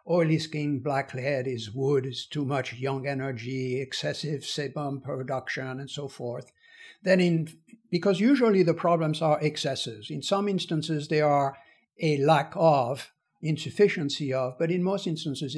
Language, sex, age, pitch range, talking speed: English, male, 60-79, 135-170 Hz, 150 wpm